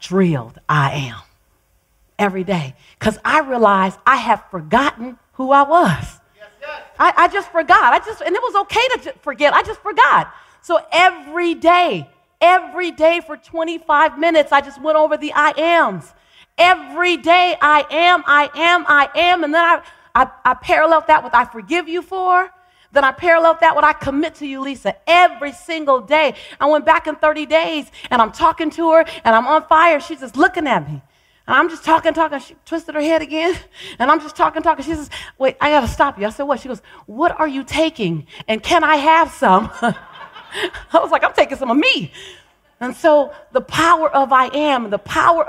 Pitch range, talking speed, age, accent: 255-330 Hz, 200 wpm, 40-59, American